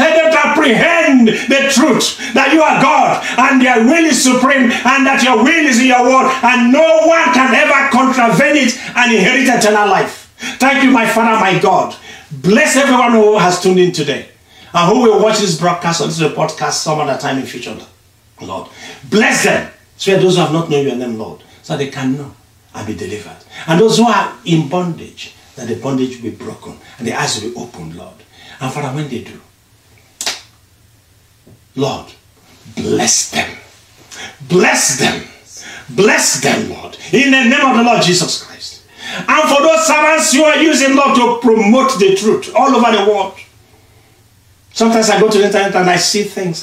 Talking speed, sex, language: 185 wpm, male, English